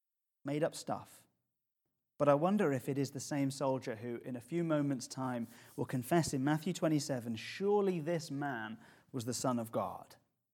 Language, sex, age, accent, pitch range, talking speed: English, male, 30-49, British, 125-150 Hz, 170 wpm